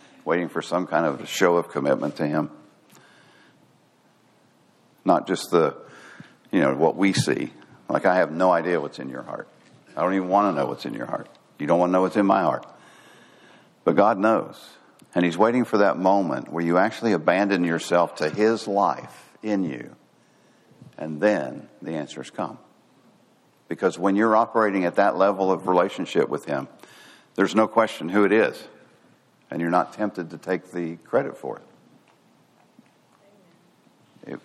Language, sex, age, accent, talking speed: English, male, 60-79, American, 170 wpm